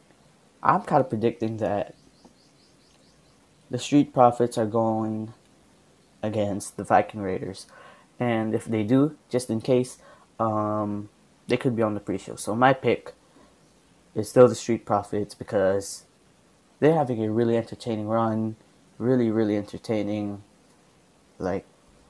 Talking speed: 130 wpm